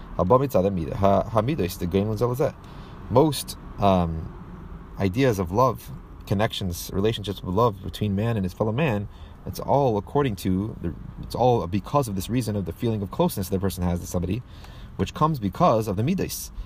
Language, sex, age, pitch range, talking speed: English, male, 30-49, 90-105 Hz, 155 wpm